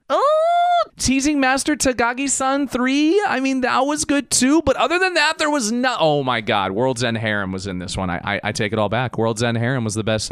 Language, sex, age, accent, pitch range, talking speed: English, male, 30-49, American, 120-185 Hz, 245 wpm